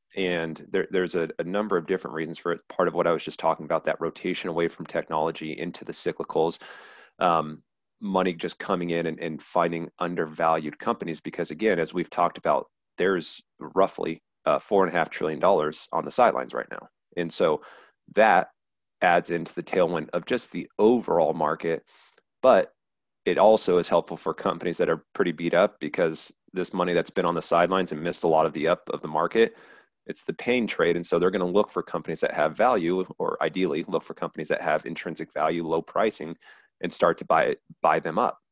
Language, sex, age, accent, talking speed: English, male, 30-49, American, 200 wpm